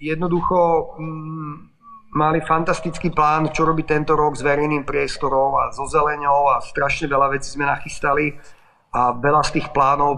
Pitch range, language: 130-155 Hz, Slovak